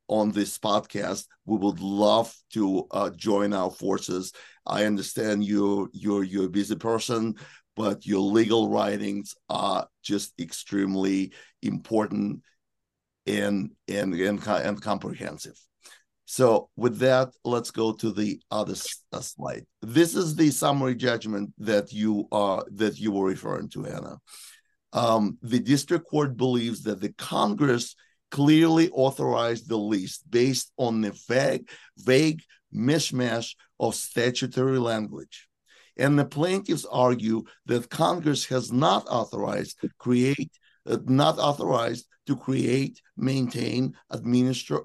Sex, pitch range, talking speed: male, 105-130 Hz, 125 wpm